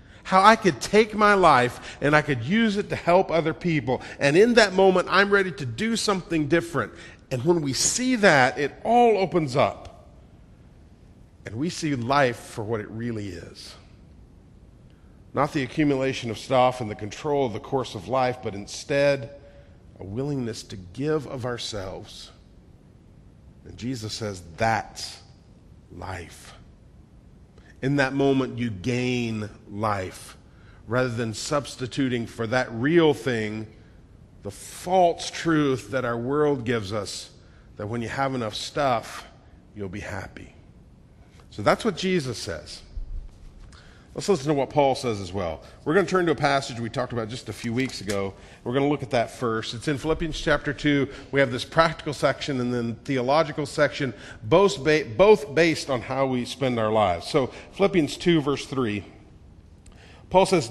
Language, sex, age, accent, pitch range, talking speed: English, male, 40-59, American, 110-155 Hz, 165 wpm